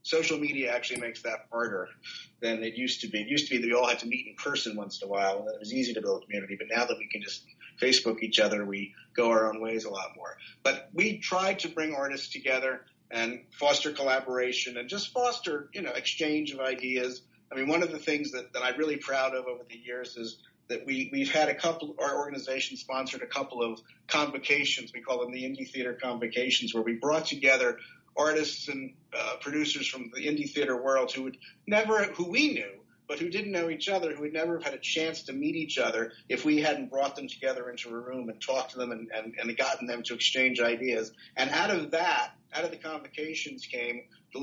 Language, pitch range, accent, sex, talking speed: English, 120-150 Hz, American, male, 235 wpm